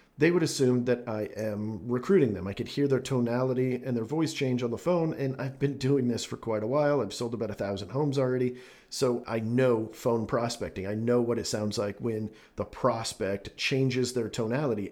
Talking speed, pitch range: 210 wpm, 115-140 Hz